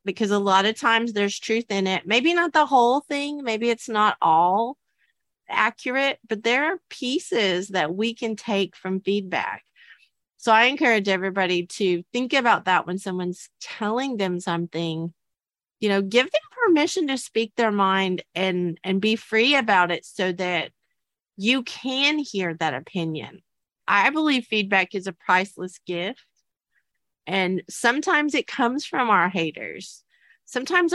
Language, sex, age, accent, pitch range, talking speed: English, female, 30-49, American, 180-230 Hz, 155 wpm